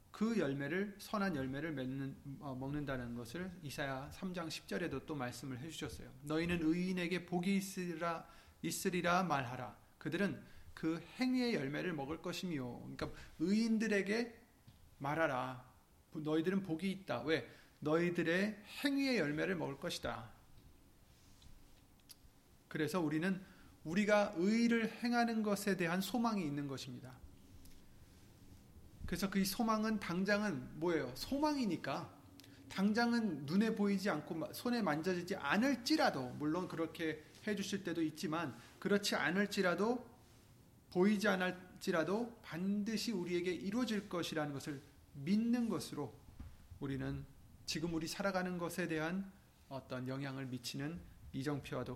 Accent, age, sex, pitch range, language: native, 30-49, male, 135-195 Hz, Korean